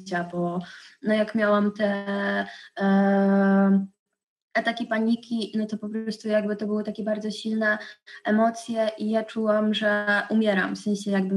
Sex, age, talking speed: female, 20-39, 145 wpm